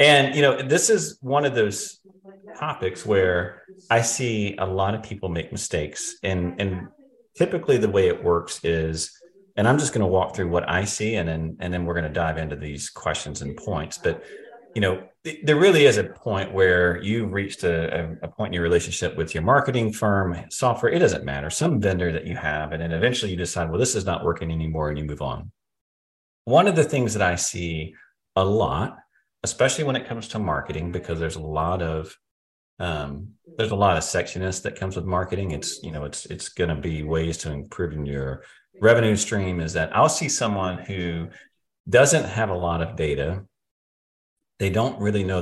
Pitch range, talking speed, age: 80-115 Hz, 205 wpm, 30-49